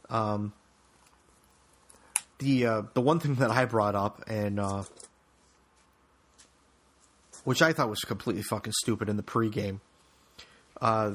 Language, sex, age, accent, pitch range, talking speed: English, male, 30-49, American, 105-125 Hz, 125 wpm